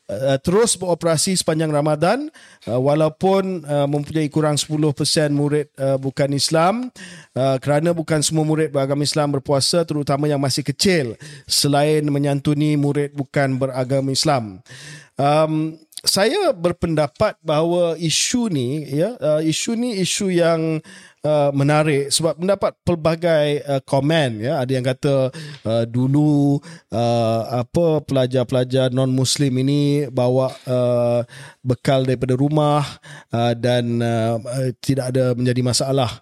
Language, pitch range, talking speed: Malay, 135-165 Hz, 115 wpm